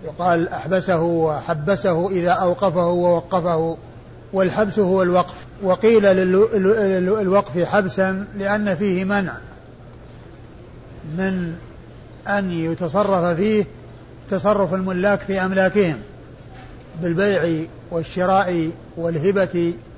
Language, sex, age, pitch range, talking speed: Arabic, male, 50-69, 165-195 Hz, 80 wpm